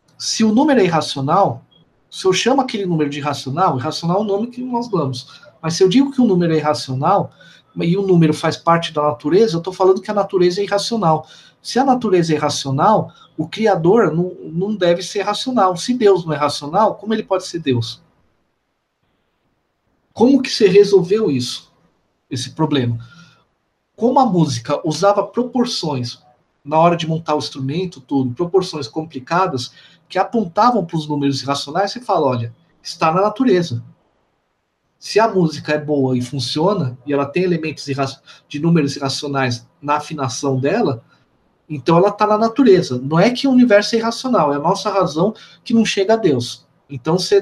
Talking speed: 175 wpm